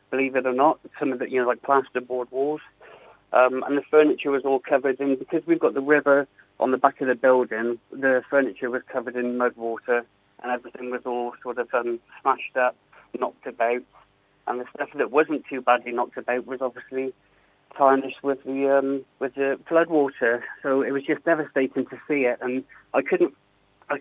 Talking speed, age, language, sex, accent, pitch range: 200 wpm, 30-49, English, male, British, 125-140 Hz